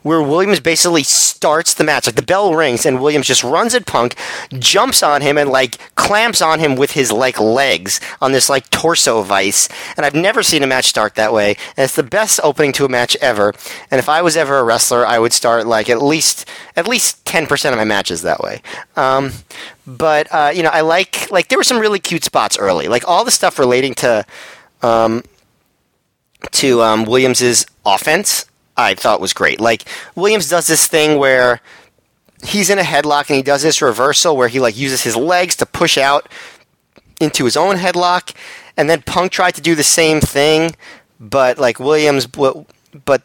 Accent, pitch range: American, 120-160 Hz